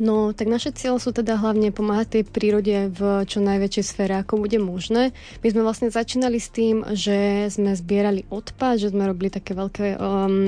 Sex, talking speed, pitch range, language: female, 190 wpm, 195-220 Hz, Slovak